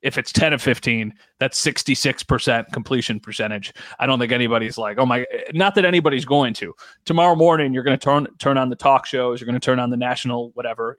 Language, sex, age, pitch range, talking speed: English, male, 30-49, 120-140 Hz, 215 wpm